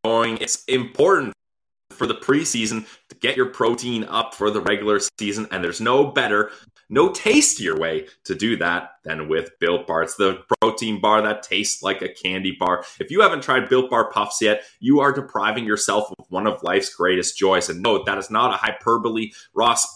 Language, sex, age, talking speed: English, male, 20-39, 190 wpm